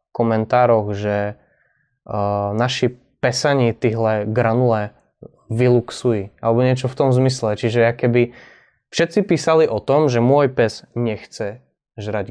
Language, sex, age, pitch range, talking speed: Slovak, male, 20-39, 110-130 Hz, 115 wpm